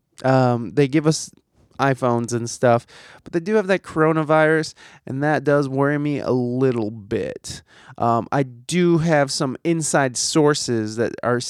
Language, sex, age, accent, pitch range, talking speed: English, male, 20-39, American, 125-175 Hz, 155 wpm